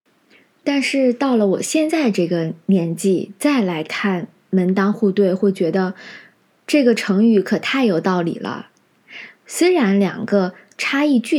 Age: 20-39